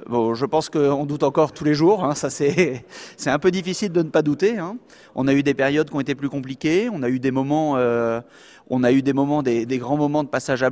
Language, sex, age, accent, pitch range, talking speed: French, male, 30-49, French, 130-155 Hz, 275 wpm